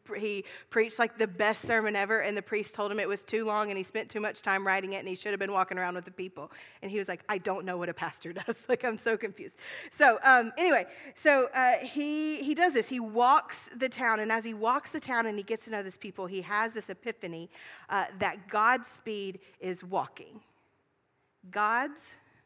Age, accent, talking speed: 40-59, American, 230 wpm